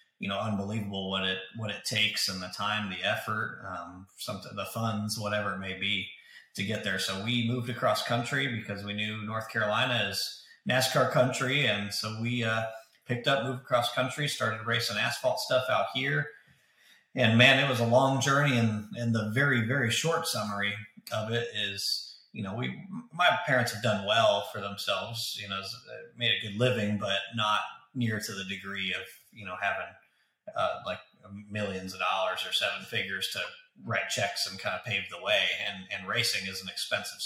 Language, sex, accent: English, male, American